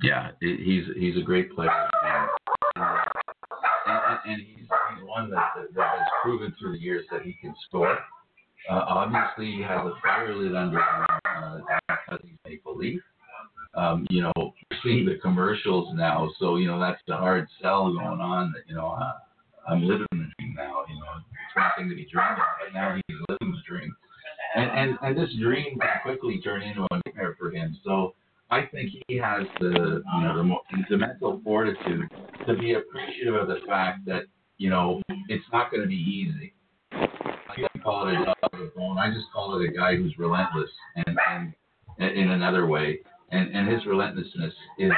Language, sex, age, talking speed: English, male, 50-69, 195 wpm